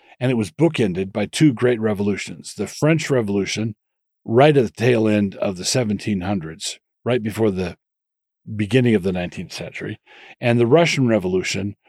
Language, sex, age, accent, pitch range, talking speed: English, male, 40-59, American, 100-120 Hz, 155 wpm